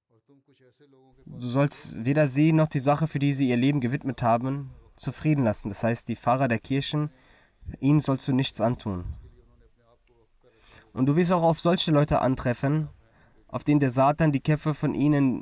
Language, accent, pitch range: German, German, 115-140 Hz